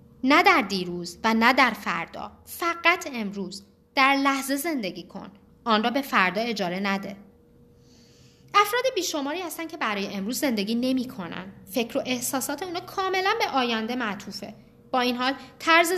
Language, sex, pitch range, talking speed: Persian, female, 205-330 Hz, 150 wpm